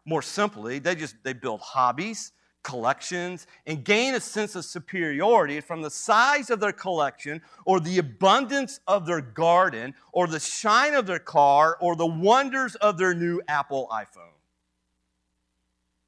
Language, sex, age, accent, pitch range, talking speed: English, male, 40-59, American, 140-210 Hz, 150 wpm